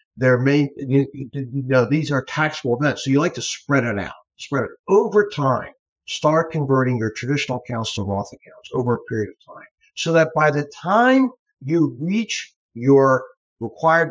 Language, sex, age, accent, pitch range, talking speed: English, male, 60-79, American, 125-160 Hz, 175 wpm